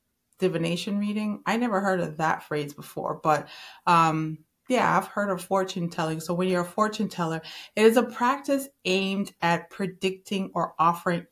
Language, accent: English, American